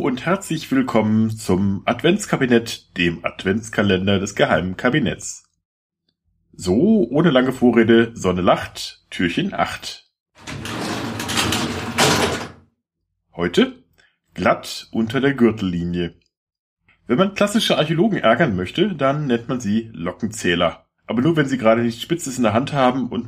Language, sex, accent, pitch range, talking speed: German, male, German, 95-135 Hz, 120 wpm